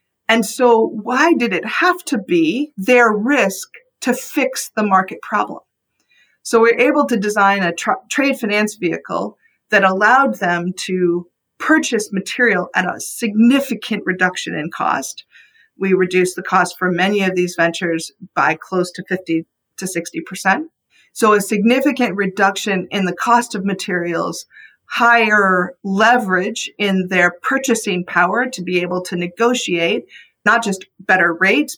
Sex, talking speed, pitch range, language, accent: female, 145 wpm, 185-240 Hz, English, American